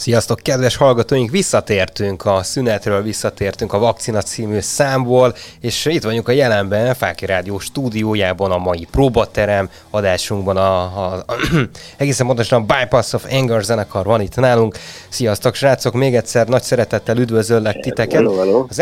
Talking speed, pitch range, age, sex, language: 140 wpm, 100-120 Hz, 20-39, male, Hungarian